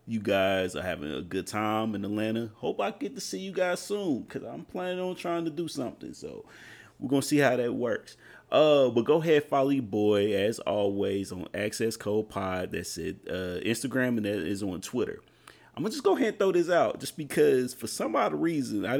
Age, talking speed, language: 30-49, 225 wpm, English